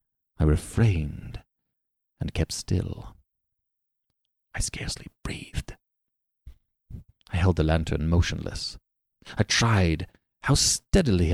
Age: 30-49